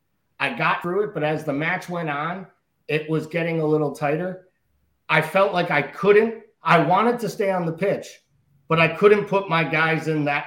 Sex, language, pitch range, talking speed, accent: male, English, 145-180 Hz, 205 wpm, American